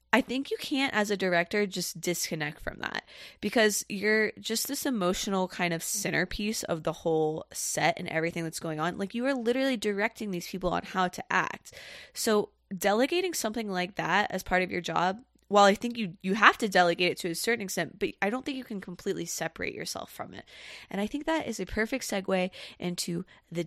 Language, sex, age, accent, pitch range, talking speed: English, female, 20-39, American, 160-215 Hz, 210 wpm